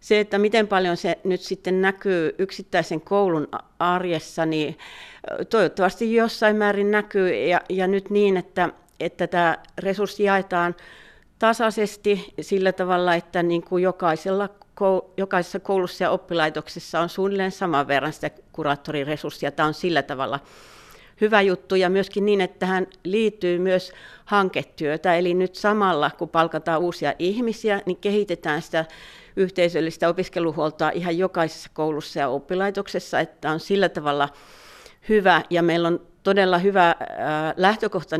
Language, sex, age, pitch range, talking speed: Finnish, female, 60-79, 160-190 Hz, 130 wpm